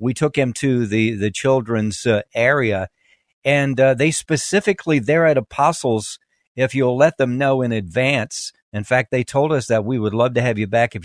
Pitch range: 115-155 Hz